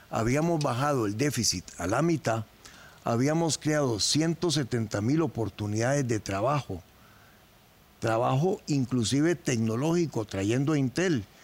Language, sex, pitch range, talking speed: Spanish, male, 115-150 Hz, 100 wpm